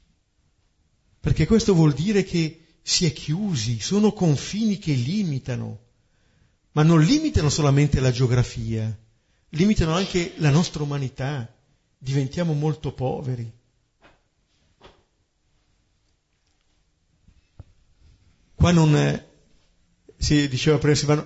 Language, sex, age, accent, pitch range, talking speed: Italian, male, 50-69, native, 115-155 Hz, 90 wpm